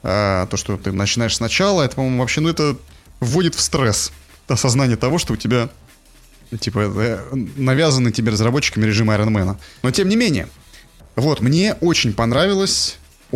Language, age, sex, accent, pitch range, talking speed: Russian, 20-39, male, native, 100-130 Hz, 155 wpm